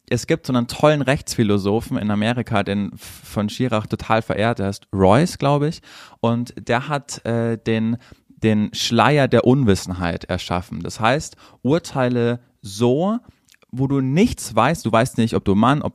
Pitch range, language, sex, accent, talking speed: 105-125 Hz, German, male, German, 160 wpm